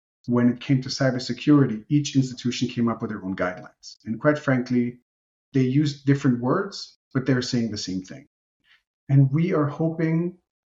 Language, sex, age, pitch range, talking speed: English, male, 40-59, 110-140 Hz, 165 wpm